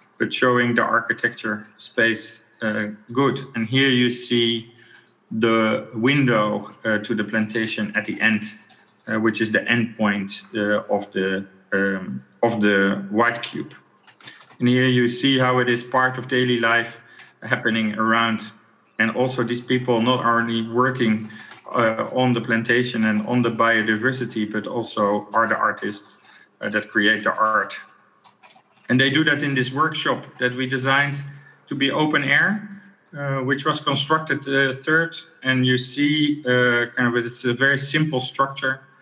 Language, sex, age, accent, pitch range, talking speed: English, male, 40-59, Dutch, 110-130 Hz, 155 wpm